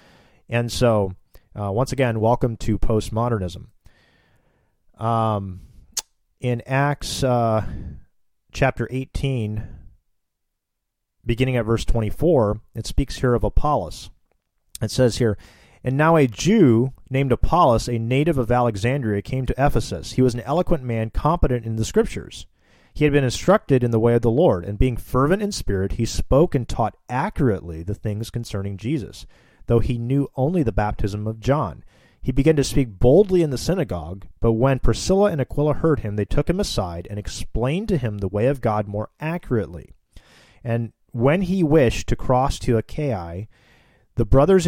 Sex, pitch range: male, 105-135 Hz